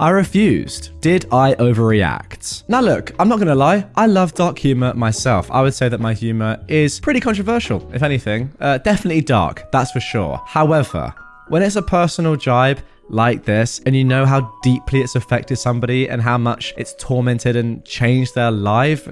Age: 20-39